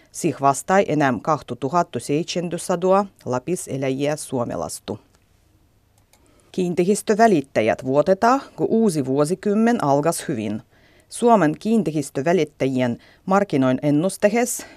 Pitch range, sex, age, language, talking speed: 135-195 Hz, female, 30-49, Finnish, 75 wpm